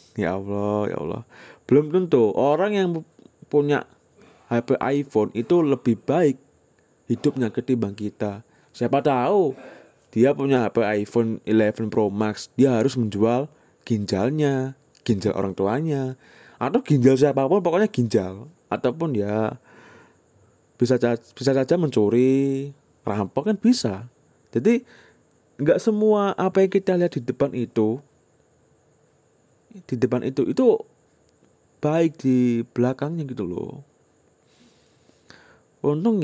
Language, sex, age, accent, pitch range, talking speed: Indonesian, male, 20-39, native, 110-145 Hz, 110 wpm